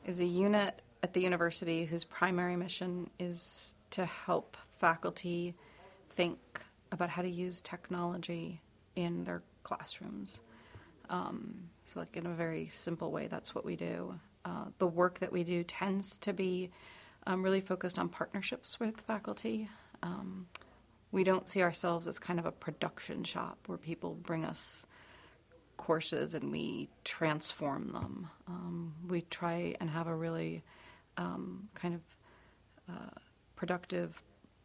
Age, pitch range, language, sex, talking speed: 40-59, 160-180 Hz, English, female, 140 wpm